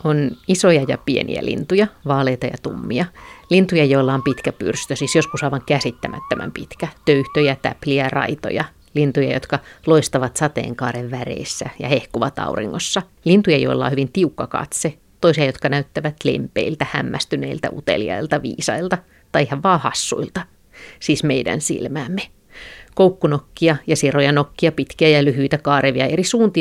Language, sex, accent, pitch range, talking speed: Finnish, female, native, 130-155 Hz, 135 wpm